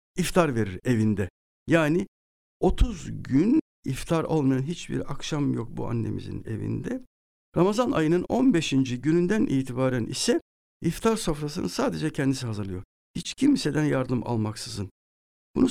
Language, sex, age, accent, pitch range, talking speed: Turkish, male, 60-79, native, 115-165 Hz, 115 wpm